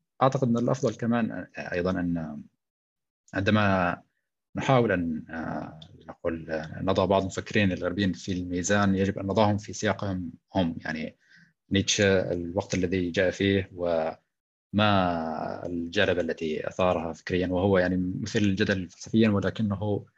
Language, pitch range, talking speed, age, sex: Arabic, 90-110 Hz, 115 wpm, 20-39, male